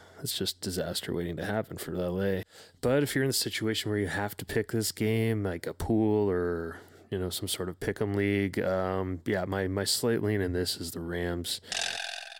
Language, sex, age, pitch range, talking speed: English, male, 20-39, 90-105 Hz, 215 wpm